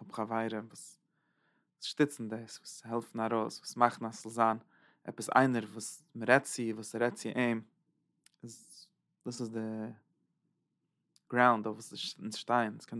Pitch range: 115-135 Hz